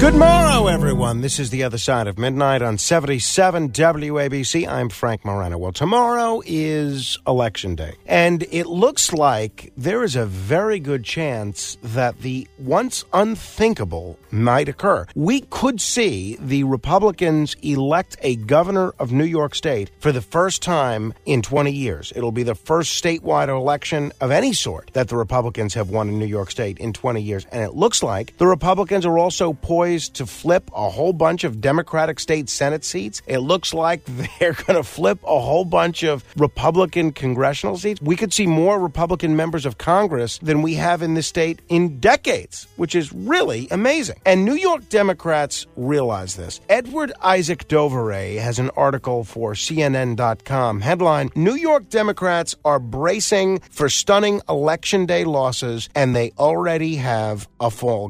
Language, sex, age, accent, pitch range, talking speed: English, male, 50-69, American, 120-175 Hz, 165 wpm